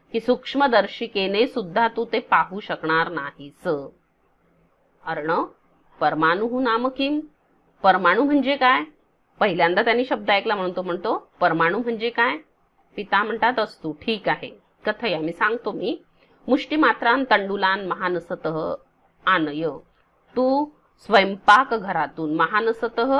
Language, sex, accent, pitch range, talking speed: Marathi, female, native, 180-255 Hz, 105 wpm